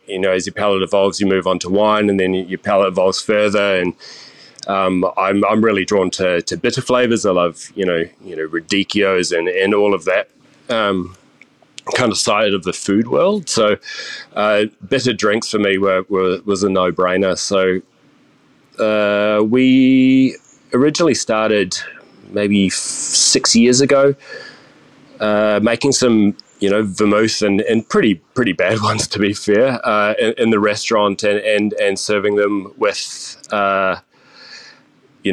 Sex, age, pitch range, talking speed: male, 30-49, 95-110 Hz, 165 wpm